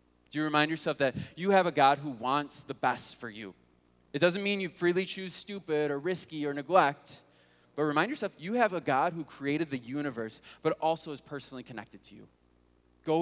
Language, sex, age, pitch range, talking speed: English, male, 20-39, 125-180 Hz, 205 wpm